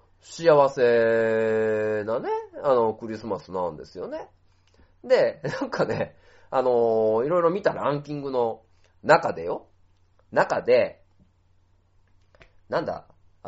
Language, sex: Japanese, male